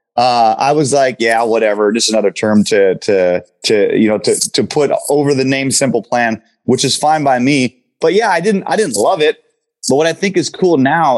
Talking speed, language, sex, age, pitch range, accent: 225 wpm, English, male, 30-49, 120-155 Hz, American